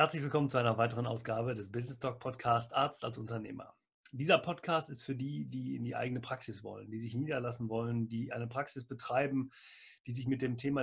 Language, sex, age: German, male, 30-49